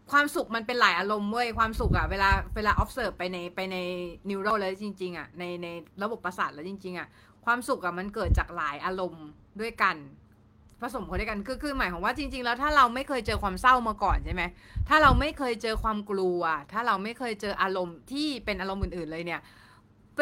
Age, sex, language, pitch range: 30-49, female, Thai, 180-265 Hz